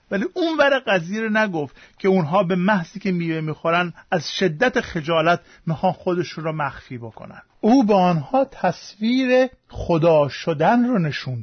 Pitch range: 150-200 Hz